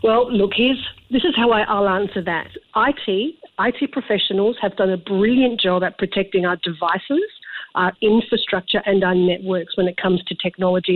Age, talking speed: 50-69, 170 wpm